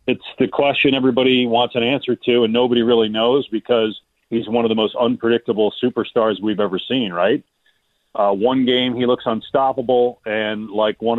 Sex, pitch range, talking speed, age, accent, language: male, 110-135 Hz, 175 wpm, 40-59, American, English